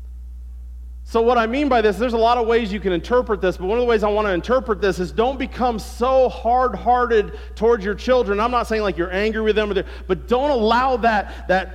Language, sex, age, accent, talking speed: English, male, 40-59, American, 235 wpm